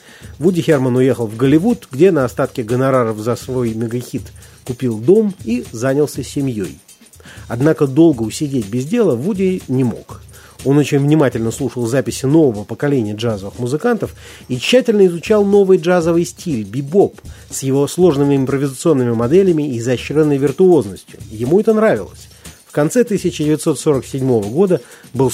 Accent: native